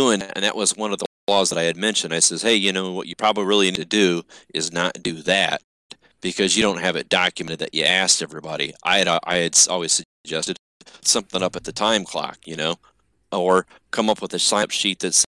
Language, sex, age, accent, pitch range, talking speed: English, male, 30-49, American, 85-100 Hz, 230 wpm